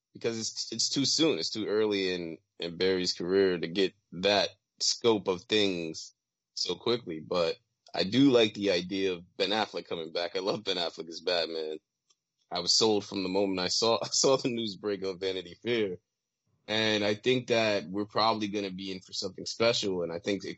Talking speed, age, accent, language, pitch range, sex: 205 wpm, 30-49, American, English, 90-110 Hz, male